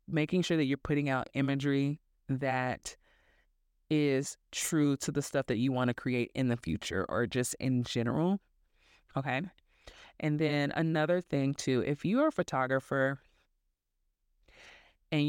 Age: 20-39